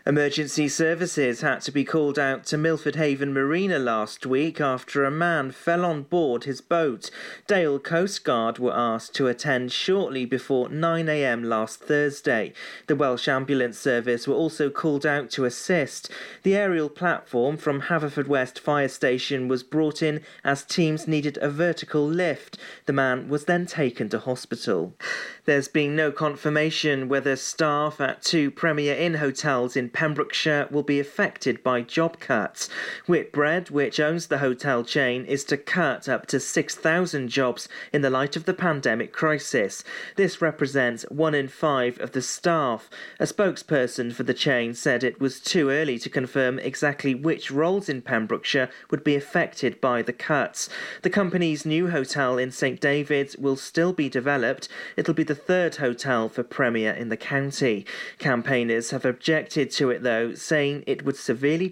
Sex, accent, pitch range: male, British, 130-155 Hz